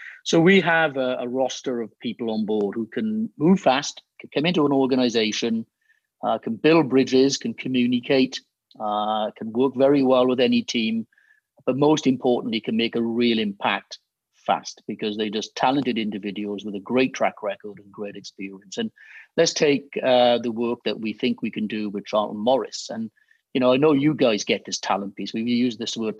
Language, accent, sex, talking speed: English, British, male, 195 wpm